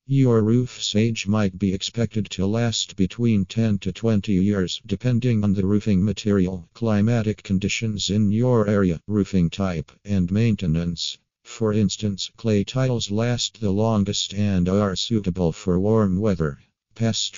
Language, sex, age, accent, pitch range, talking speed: English, male, 50-69, American, 95-110 Hz, 140 wpm